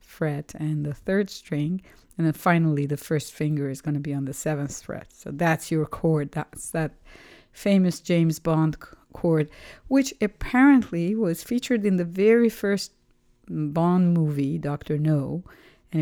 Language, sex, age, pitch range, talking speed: English, female, 50-69, 150-185 Hz, 155 wpm